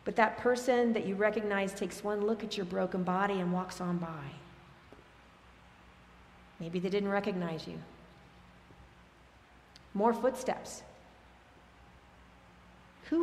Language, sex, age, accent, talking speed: English, female, 40-59, American, 115 wpm